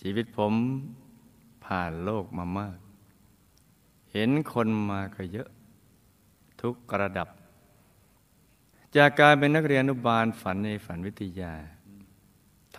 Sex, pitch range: male, 100-130 Hz